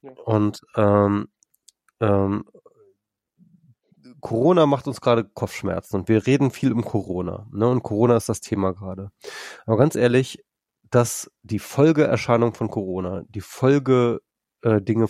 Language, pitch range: German, 100-120 Hz